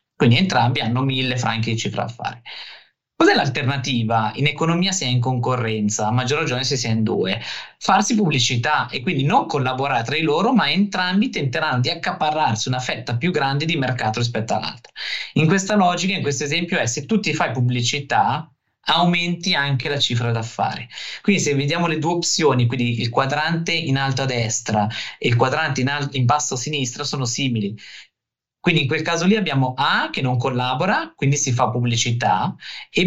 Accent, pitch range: native, 120-155 Hz